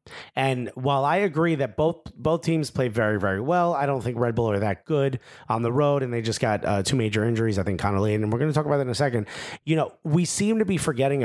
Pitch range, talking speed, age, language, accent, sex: 110-150 Hz, 270 wpm, 30-49, English, American, male